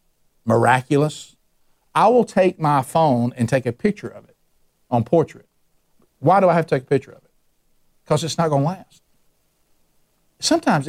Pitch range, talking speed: 120-155 Hz, 170 wpm